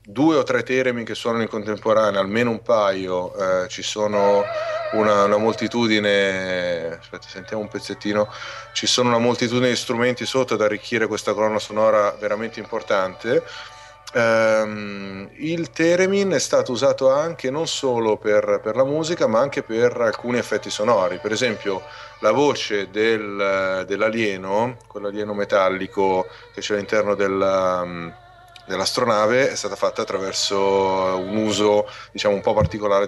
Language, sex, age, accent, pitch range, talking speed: Italian, male, 30-49, native, 100-115 Hz, 145 wpm